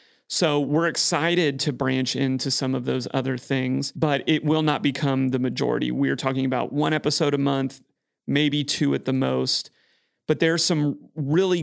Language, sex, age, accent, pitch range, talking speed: English, male, 30-49, American, 130-150 Hz, 175 wpm